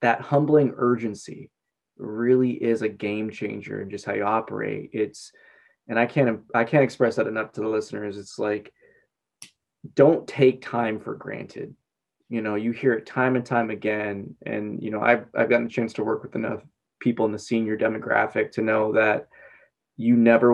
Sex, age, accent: male, 20-39, American